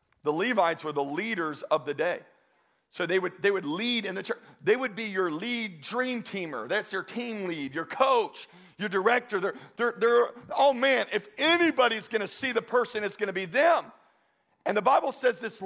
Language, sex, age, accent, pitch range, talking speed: English, male, 40-59, American, 165-240 Hz, 205 wpm